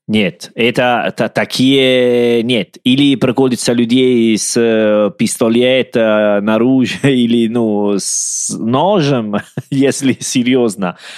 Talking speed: 95 wpm